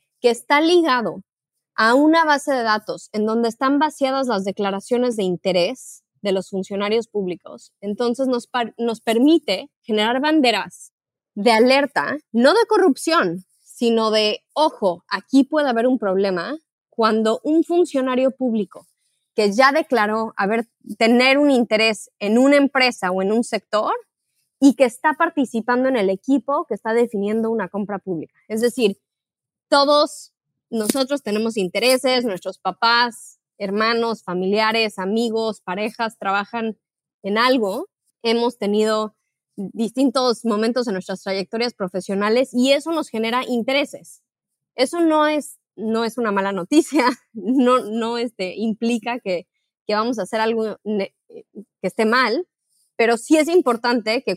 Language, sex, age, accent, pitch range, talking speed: Spanish, female, 20-39, Mexican, 205-265 Hz, 140 wpm